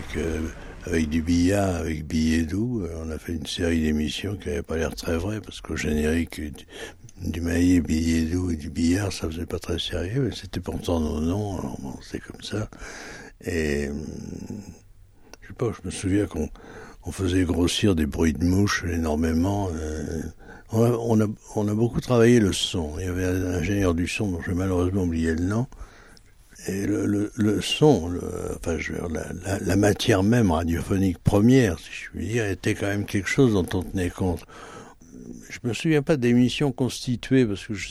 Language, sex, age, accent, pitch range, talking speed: French, male, 60-79, French, 80-100 Hz, 200 wpm